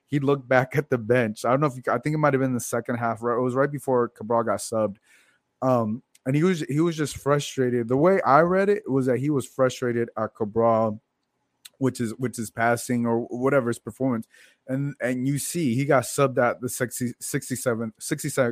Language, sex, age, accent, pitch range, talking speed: English, male, 20-39, American, 115-135 Hz, 225 wpm